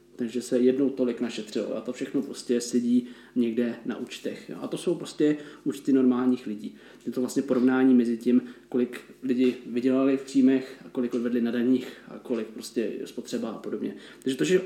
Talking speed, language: 190 wpm, Czech